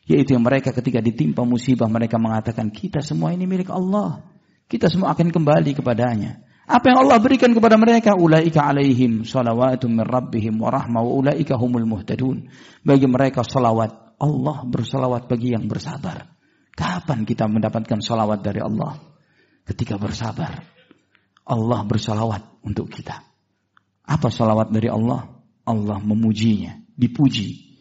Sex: male